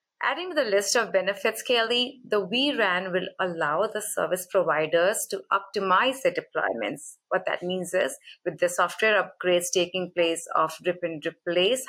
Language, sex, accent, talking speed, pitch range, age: English, female, Indian, 160 wpm, 180-225 Hz, 30-49